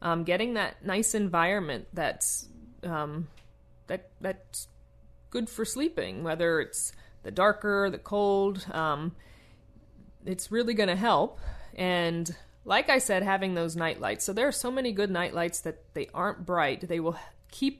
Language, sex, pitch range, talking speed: English, female, 160-200 Hz, 150 wpm